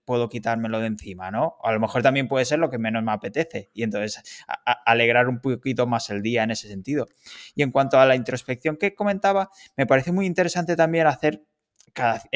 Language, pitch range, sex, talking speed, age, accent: Spanish, 115-145 Hz, male, 205 wpm, 20-39, Spanish